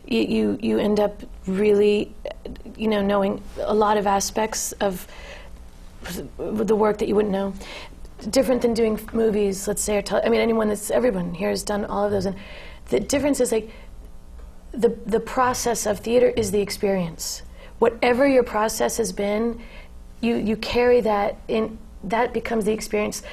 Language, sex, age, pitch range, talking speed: English, female, 40-59, 205-230 Hz, 165 wpm